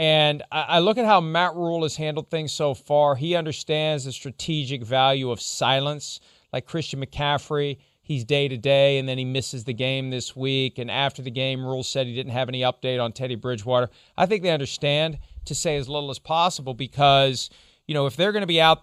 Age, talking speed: 40-59, 205 wpm